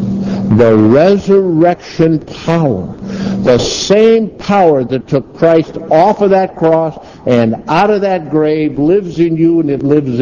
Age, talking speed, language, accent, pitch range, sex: 60-79, 140 wpm, English, American, 130-195 Hz, male